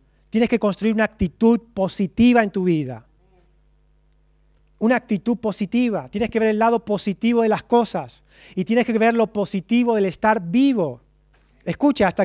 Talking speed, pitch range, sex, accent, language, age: 155 wpm, 165-220 Hz, male, Argentinian, Spanish, 30-49